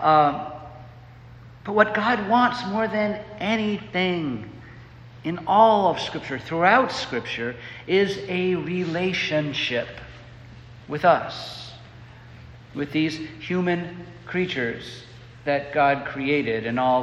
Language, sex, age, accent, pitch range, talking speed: English, male, 50-69, American, 120-170 Hz, 100 wpm